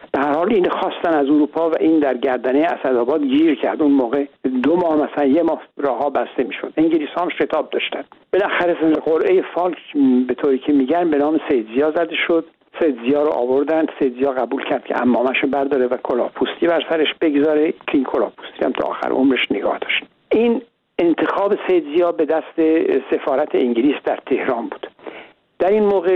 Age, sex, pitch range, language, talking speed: 60-79, male, 140-175 Hz, Persian, 175 wpm